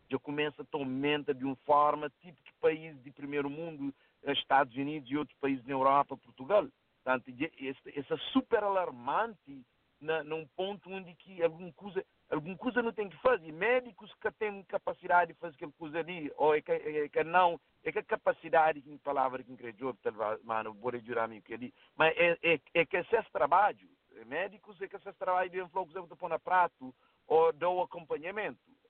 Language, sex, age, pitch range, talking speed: English, male, 50-69, 140-190 Hz, 175 wpm